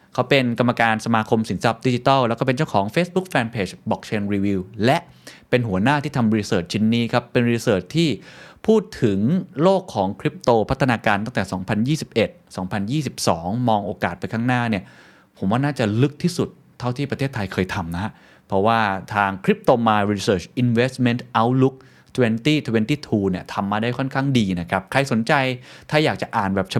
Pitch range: 100-135 Hz